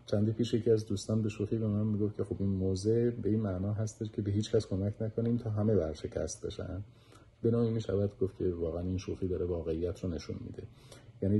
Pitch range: 85-110 Hz